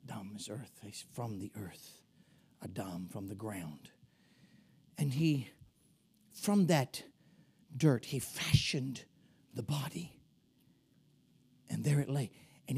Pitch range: 130-160 Hz